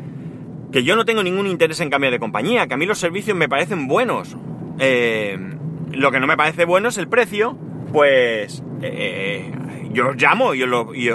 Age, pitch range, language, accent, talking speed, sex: 30-49, 135-165 Hz, Spanish, Spanish, 190 wpm, male